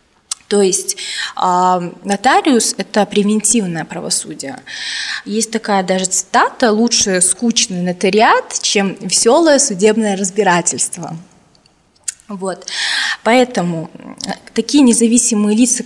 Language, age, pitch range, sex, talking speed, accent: Russian, 20-39, 185-225 Hz, female, 80 wpm, native